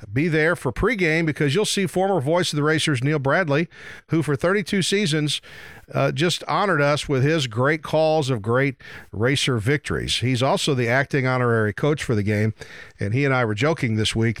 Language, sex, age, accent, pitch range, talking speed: English, male, 50-69, American, 115-150 Hz, 195 wpm